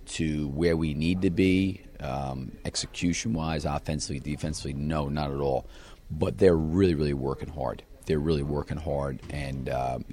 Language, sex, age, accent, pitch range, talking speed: English, male, 40-59, American, 75-90 Hz, 160 wpm